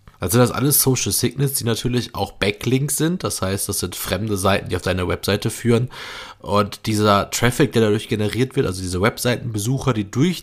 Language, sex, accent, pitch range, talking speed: German, male, German, 100-125 Hz, 200 wpm